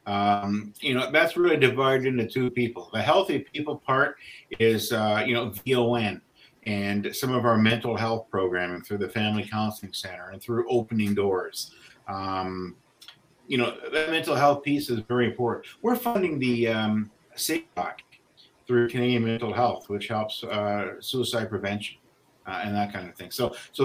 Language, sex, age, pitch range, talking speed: English, male, 50-69, 105-130 Hz, 165 wpm